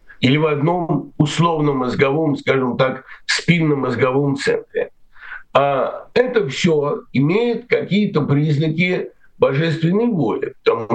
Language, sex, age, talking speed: Russian, male, 60-79, 105 wpm